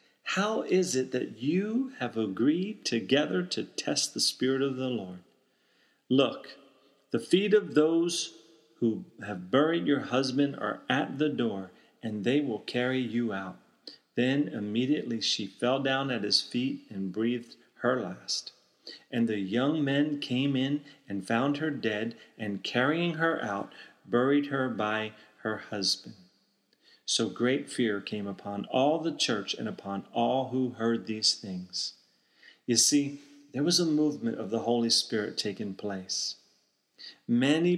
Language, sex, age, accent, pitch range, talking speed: English, male, 40-59, American, 110-145 Hz, 150 wpm